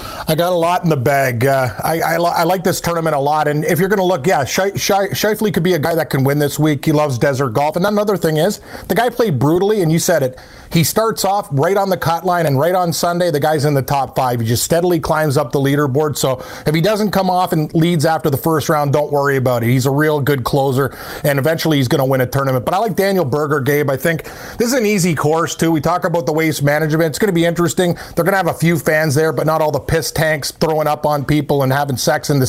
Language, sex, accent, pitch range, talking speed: English, male, American, 150-180 Hz, 285 wpm